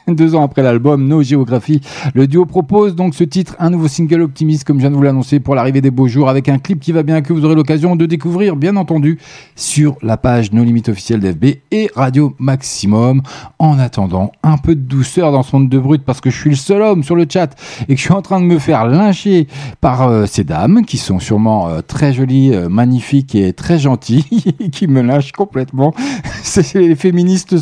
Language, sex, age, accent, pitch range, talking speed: French, male, 40-59, French, 130-165 Hz, 225 wpm